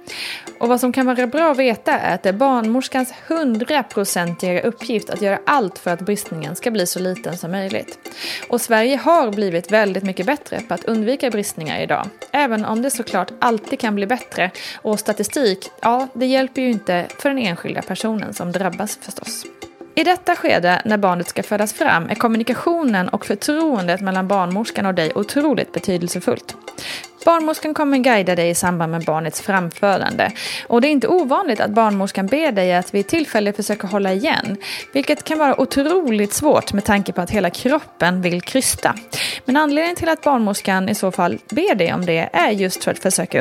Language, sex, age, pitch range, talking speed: Swedish, female, 20-39, 190-265 Hz, 185 wpm